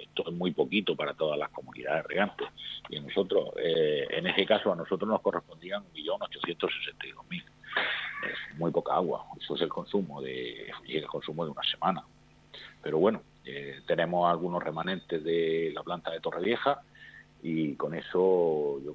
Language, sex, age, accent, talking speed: Spanish, male, 50-69, Spanish, 155 wpm